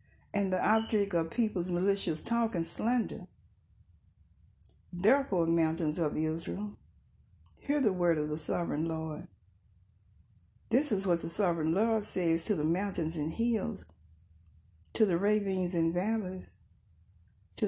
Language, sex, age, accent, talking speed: English, female, 60-79, American, 130 wpm